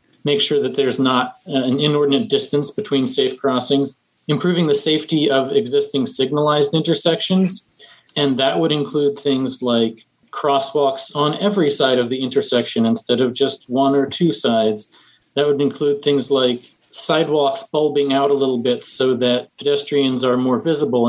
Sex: male